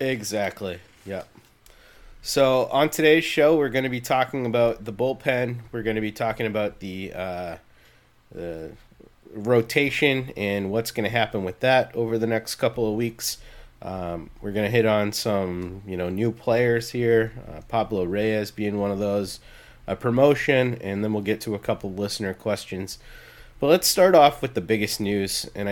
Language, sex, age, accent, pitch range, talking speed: English, male, 30-49, American, 100-120 Hz, 180 wpm